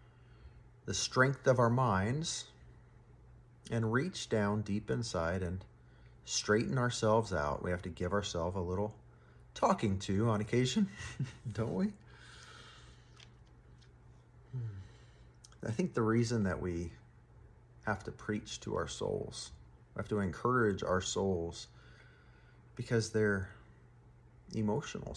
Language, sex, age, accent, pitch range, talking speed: English, male, 40-59, American, 95-120 Hz, 115 wpm